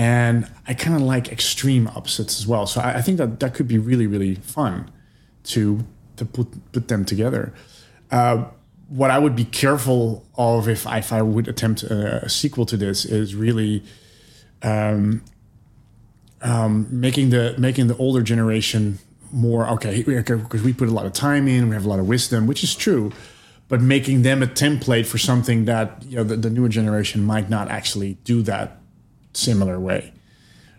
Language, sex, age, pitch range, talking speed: English, male, 30-49, 110-125 Hz, 185 wpm